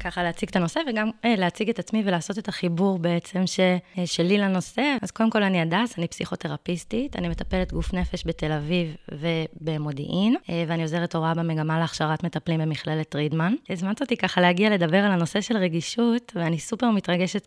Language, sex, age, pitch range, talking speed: Hebrew, female, 20-39, 165-205 Hz, 175 wpm